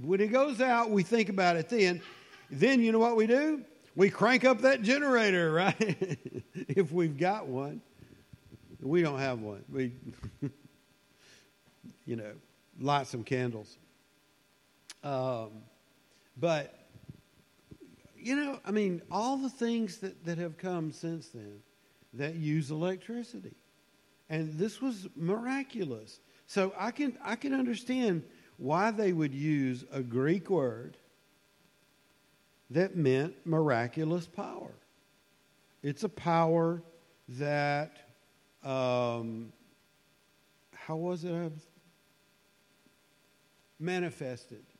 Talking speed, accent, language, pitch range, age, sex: 110 wpm, American, English, 135-200 Hz, 50-69, male